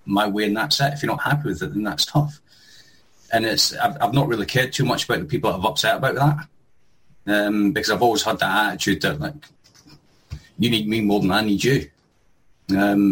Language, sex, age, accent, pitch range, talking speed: English, male, 30-49, British, 90-110 Hz, 225 wpm